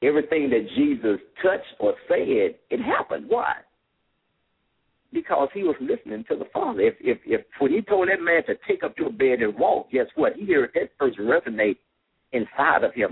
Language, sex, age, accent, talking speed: English, male, 60-79, American, 190 wpm